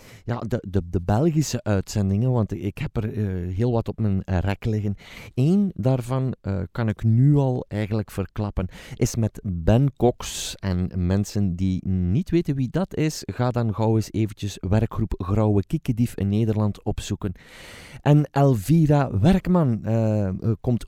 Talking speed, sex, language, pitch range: 155 wpm, male, Dutch, 100-125 Hz